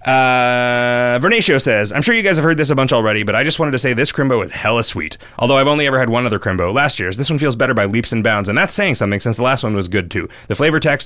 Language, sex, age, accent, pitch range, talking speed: English, male, 30-49, American, 100-130 Hz, 305 wpm